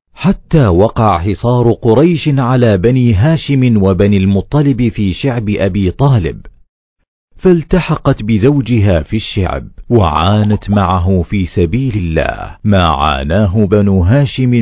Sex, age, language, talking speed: male, 40-59, Arabic, 105 wpm